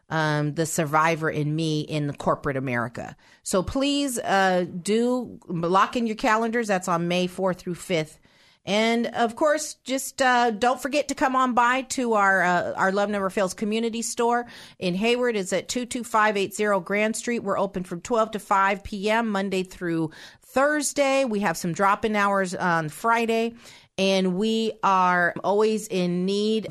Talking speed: 165 wpm